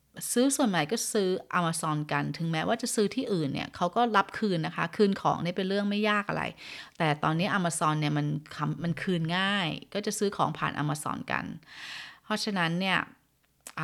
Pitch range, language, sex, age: 155-200 Hz, Thai, female, 20-39